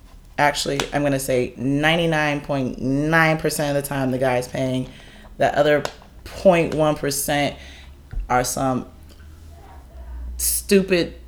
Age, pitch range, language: 20-39, 130-170 Hz, English